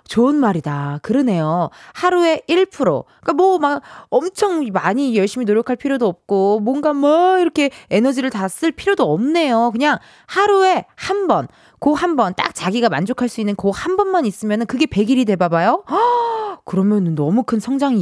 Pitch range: 200-310 Hz